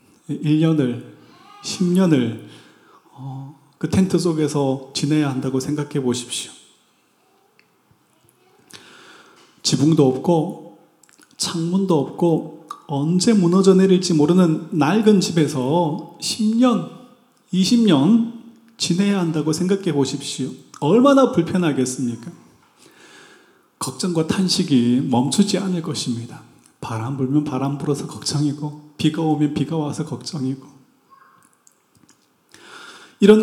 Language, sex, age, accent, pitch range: Korean, male, 30-49, native, 145-200 Hz